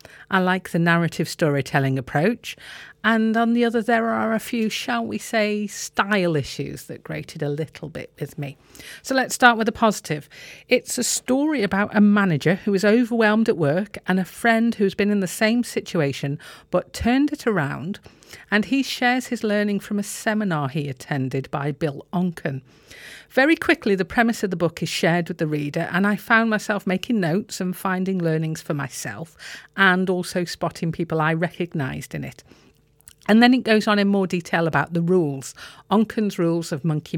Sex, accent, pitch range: female, British, 160-220 Hz